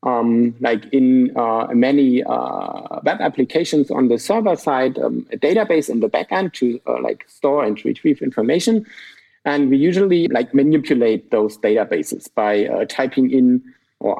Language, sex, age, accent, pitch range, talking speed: English, male, 50-69, German, 120-150 Hz, 155 wpm